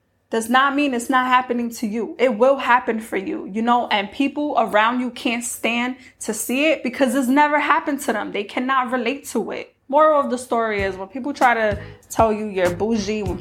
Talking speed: 220 wpm